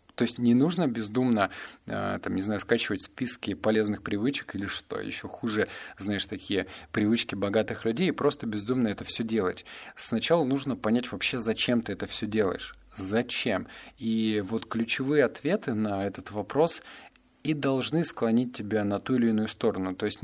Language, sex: Russian, male